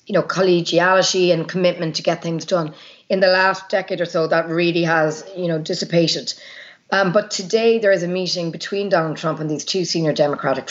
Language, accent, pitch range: English, Irish, 165-190 Hz